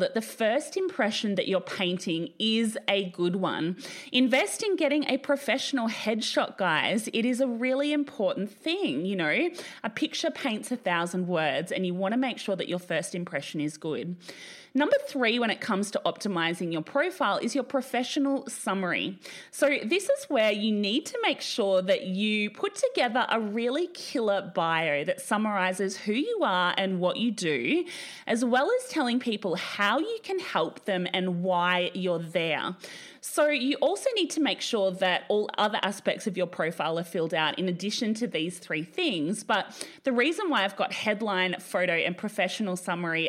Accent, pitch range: Australian, 180-275 Hz